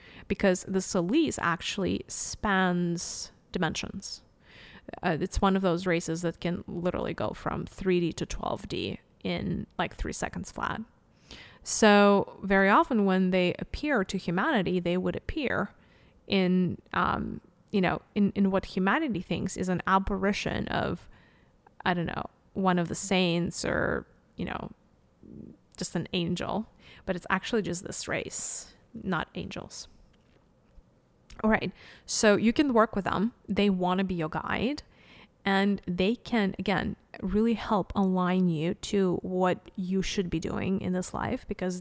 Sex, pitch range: female, 180-215 Hz